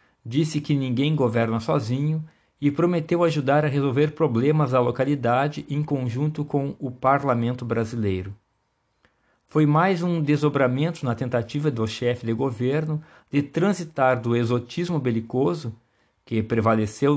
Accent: Brazilian